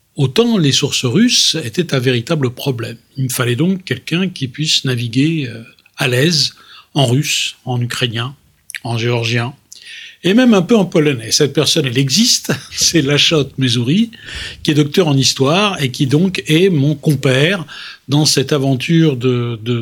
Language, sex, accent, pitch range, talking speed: French, male, French, 135-175 Hz, 160 wpm